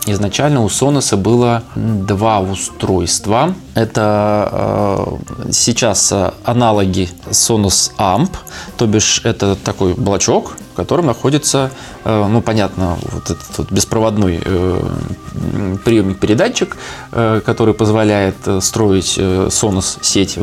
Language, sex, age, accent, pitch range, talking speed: Russian, male, 20-39, native, 100-120 Hz, 105 wpm